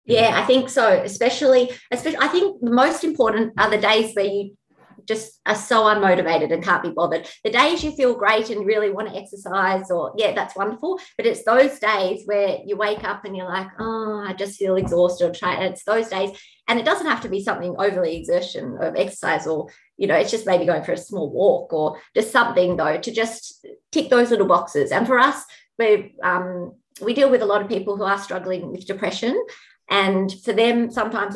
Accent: Australian